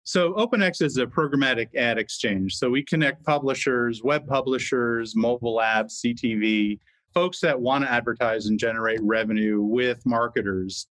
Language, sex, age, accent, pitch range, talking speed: English, male, 40-59, American, 100-120 Hz, 145 wpm